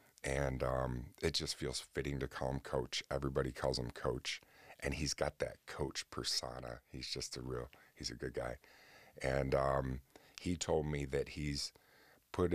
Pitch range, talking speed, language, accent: 65-80 Hz, 170 wpm, English, American